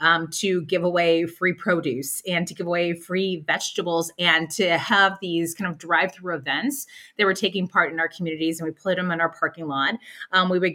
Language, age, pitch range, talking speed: English, 30-49, 165-210 Hz, 210 wpm